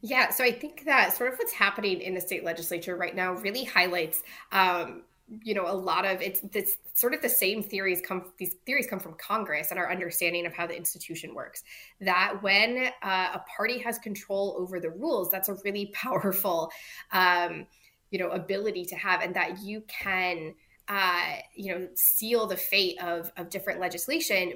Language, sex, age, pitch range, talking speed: English, female, 20-39, 180-205 Hz, 190 wpm